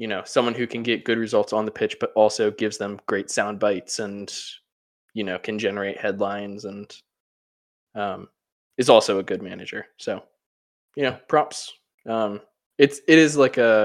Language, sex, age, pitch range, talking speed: English, male, 20-39, 105-140 Hz, 180 wpm